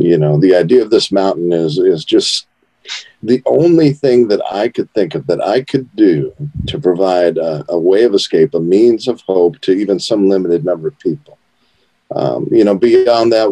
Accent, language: American, English